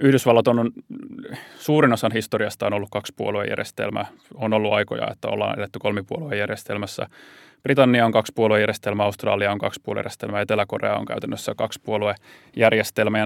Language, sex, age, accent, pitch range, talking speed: Finnish, male, 20-39, native, 105-115 Hz, 115 wpm